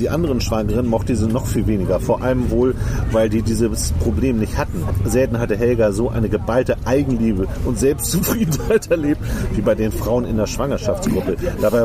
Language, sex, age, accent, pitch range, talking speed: German, male, 40-59, German, 110-130 Hz, 175 wpm